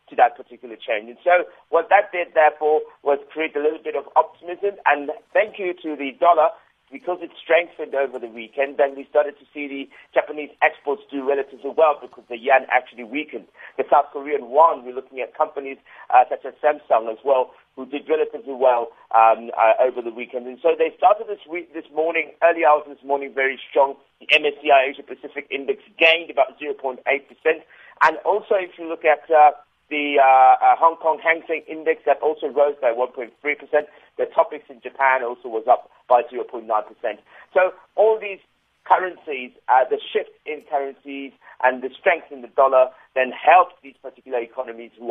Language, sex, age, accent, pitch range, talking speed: English, male, 50-69, British, 130-165 Hz, 190 wpm